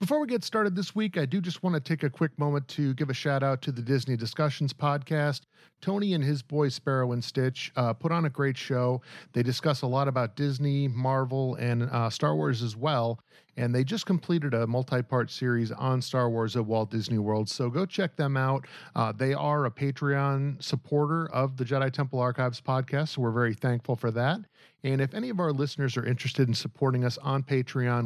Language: English